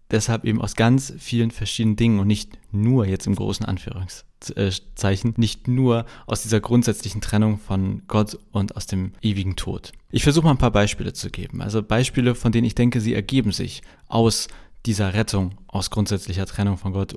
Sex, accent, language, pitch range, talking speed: male, German, German, 105-135 Hz, 180 wpm